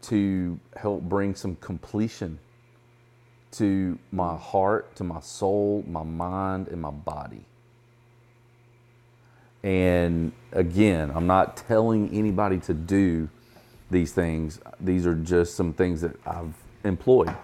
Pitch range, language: 90-120 Hz, English